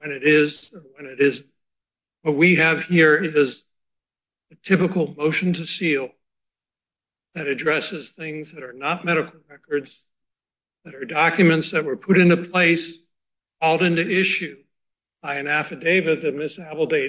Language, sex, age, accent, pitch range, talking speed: English, male, 60-79, American, 150-175 Hz, 145 wpm